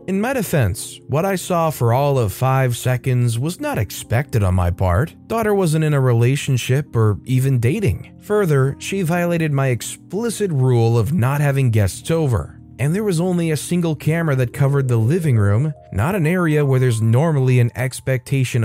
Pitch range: 115-150 Hz